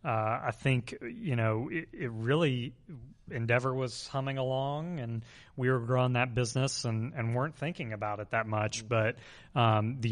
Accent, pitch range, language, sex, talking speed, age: American, 110-125 Hz, English, male, 170 wpm, 30-49